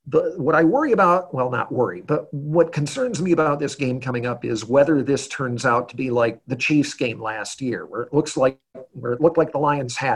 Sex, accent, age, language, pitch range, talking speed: male, American, 50-69, English, 125-160 Hz, 230 wpm